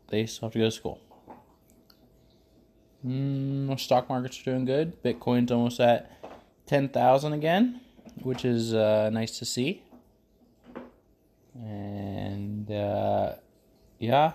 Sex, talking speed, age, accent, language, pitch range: male, 115 wpm, 20-39, American, English, 110-140 Hz